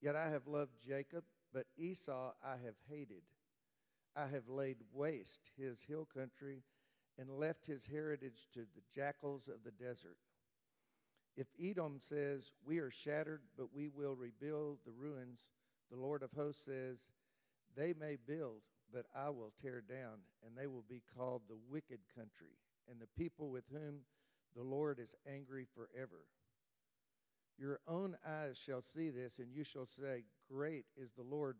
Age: 50-69